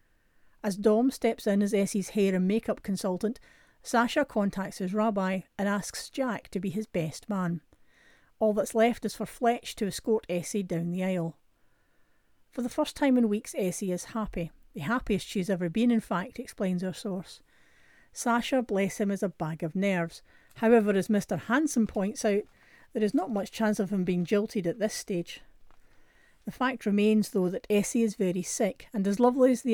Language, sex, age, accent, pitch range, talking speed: English, female, 40-59, British, 185-230 Hz, 190 wpm